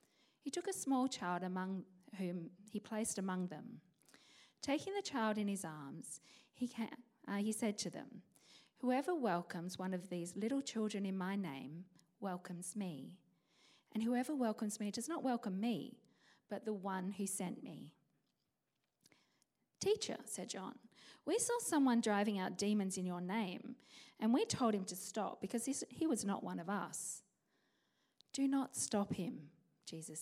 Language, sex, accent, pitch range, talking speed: English, female, Australian, 185-235 Hz, 155 wpm